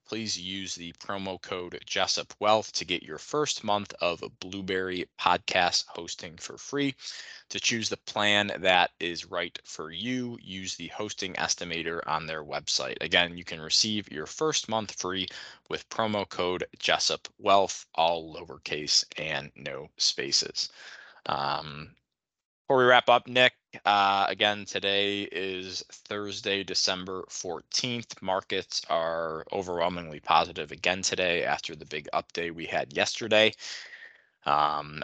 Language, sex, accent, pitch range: English, male, American, 90-110 Hz